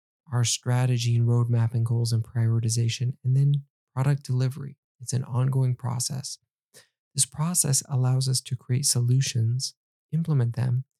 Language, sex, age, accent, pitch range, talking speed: English, male, 20-39, American, 120-140 Hz, 130 wpm